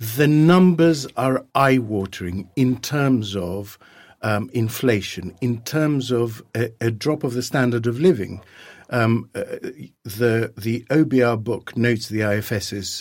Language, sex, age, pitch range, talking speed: English, male, 50-69, 115-165 Hz, 135 wpm